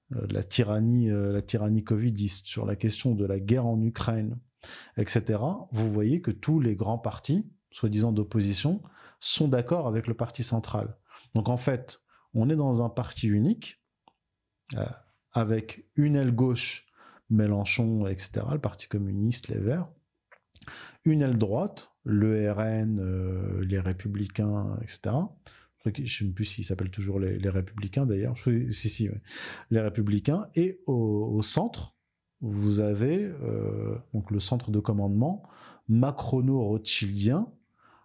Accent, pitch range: French, 105-125 Hz